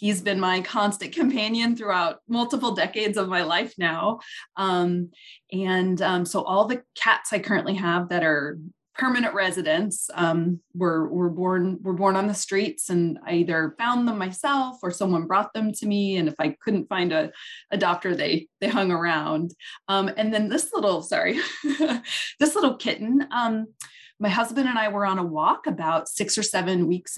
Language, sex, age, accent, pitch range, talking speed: English, female, 20-39, American, 175-220 Hz, 180 wpm